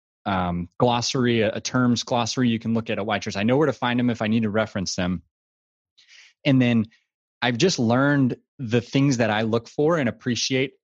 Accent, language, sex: American, English, male